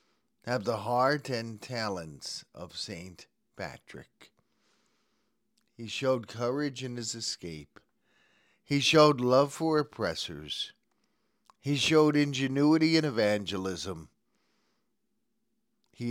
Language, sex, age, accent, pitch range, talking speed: English, male, 50-69, American, 105-140 Hz, 95 wpm